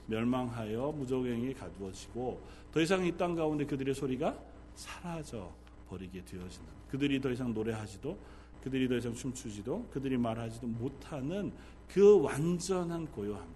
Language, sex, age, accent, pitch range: Korean, male, 40-59, native, 115-175 Hz